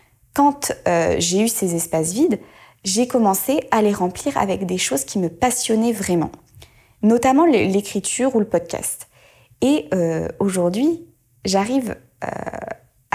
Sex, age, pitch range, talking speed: female, 20-39, 170-220 Hz, 130 wpm